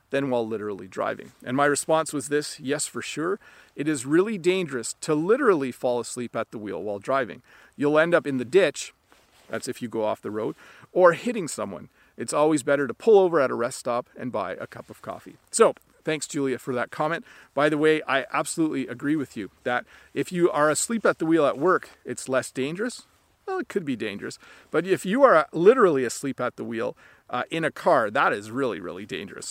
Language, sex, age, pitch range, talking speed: English, male, 40-59, 130-180 Hz, 220 wpm